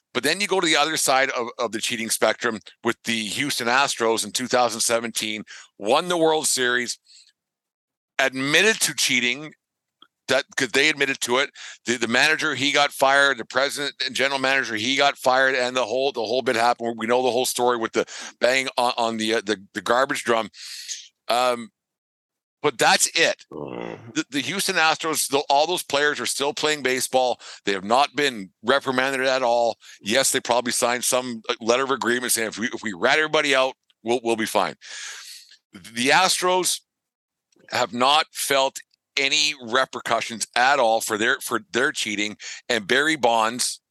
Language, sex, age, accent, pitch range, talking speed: English, male, 50-69, American, 115-140 Hz, 175 wpm